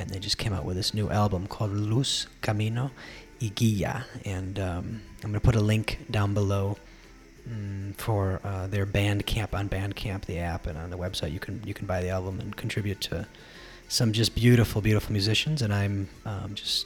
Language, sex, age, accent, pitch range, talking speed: English, male, 30-49, American, 100-115 Hz, 200 wpm